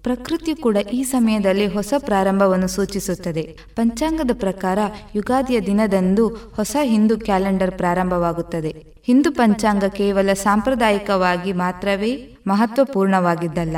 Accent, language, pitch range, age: native, Kannada, 180-225 Hz, 20-39